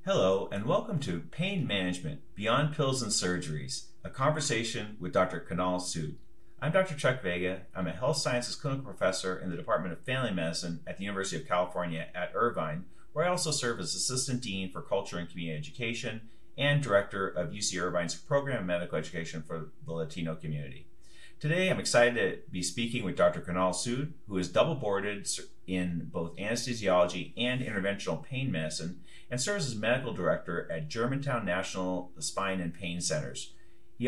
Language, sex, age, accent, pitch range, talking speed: English, male, 30-49, American, 85-135 Hz, 170 wpm